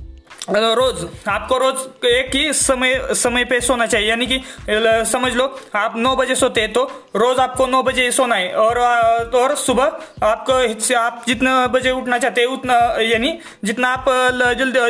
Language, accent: Hindi, native